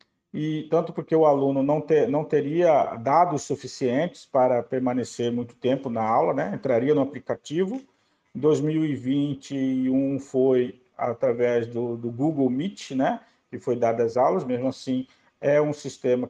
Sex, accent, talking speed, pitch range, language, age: male, Brazilian, 145 wpm, 130-180 Hz, Portuguese, 50-69